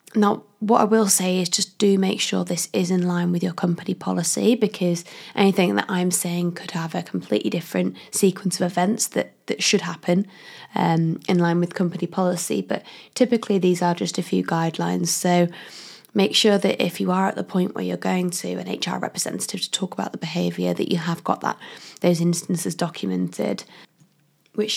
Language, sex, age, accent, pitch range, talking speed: English, female, 20-39, British, 175-200 Hz, 195 wpm